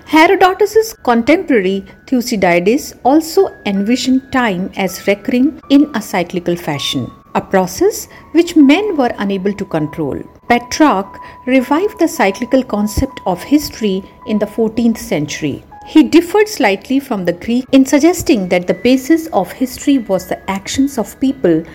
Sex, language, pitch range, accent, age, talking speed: female, English, 190-270 Hz, Indian, 50-69, 135 wpm